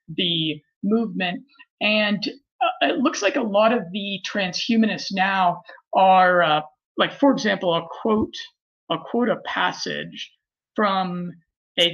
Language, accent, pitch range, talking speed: English, American, 180-220 Hz, 130 wpm